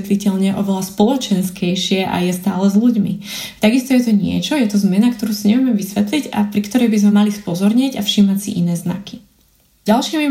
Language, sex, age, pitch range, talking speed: Slovak, female, 20-39, 195-215 Hz, 175 wpm